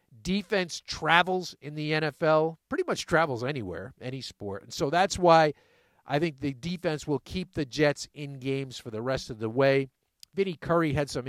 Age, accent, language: 50-69, American, English